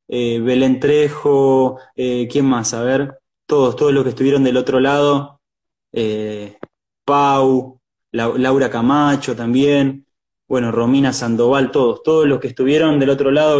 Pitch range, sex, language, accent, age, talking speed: 130-155 Hz, male, Spanish, Argentinian, 20-39, 135 wpm